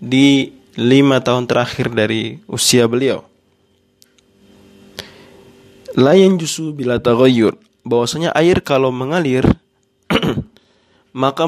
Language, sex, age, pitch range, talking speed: Indonesian, male, 20-39, 115-135 Hz, 85 wpm